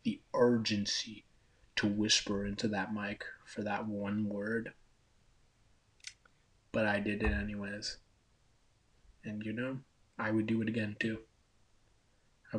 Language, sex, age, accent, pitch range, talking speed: English, male, 20-39, American, 100-120 Hz, 125 wpm